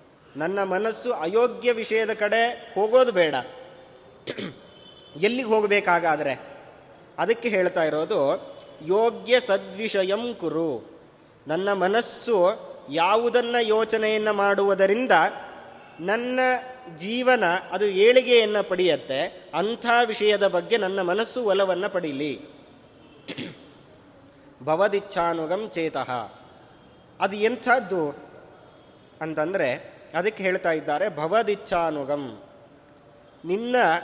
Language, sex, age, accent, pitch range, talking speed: Kannada, male, 20-39, native, 165-225 Hz, 75 wpm